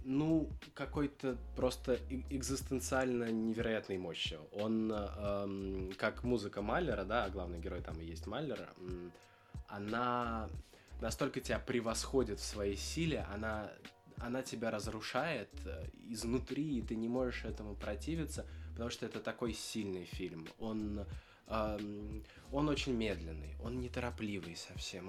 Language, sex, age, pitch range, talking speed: Russian, male, 20-39, 90-120 Hz, 115 wpm